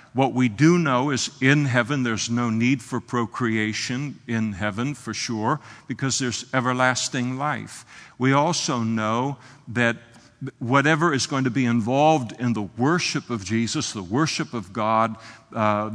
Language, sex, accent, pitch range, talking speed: English, male, American, 115-145 Hz, 150 wpm